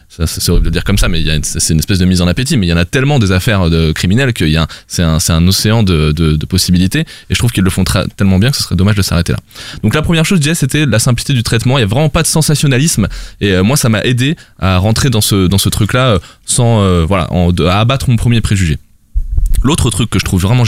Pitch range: 90-120 Hz